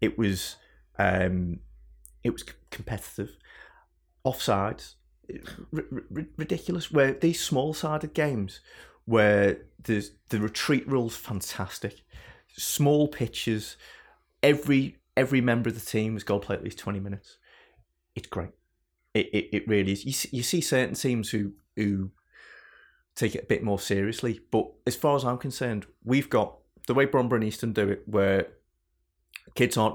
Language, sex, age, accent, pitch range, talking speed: English, male, 30-49, British, 100-125 Hz, 150 wpm